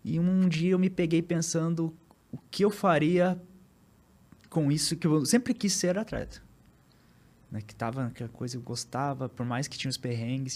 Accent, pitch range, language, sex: Brazilian, 120-165 Hz, Portuguese, male